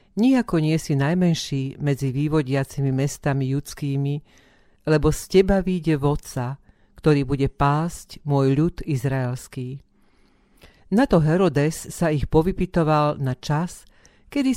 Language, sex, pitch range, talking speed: Slovak, female, 140-180 Hz, 110 wpm